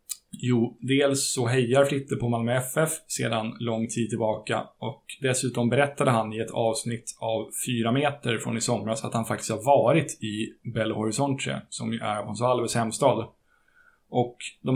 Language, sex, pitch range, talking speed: Swedish, male, 115-140 Hz, 165 wpm